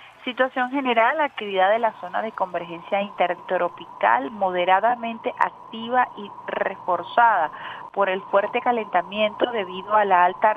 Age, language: 40-59, Spanish